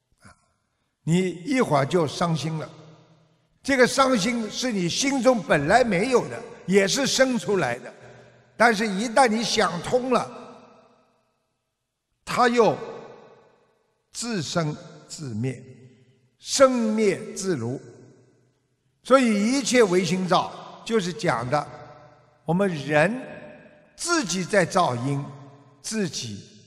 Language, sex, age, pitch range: Chinese, male, 50-69, 130-195 Hz